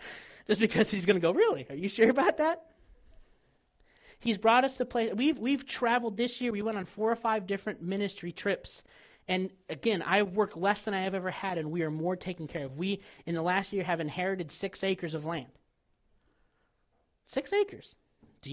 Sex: male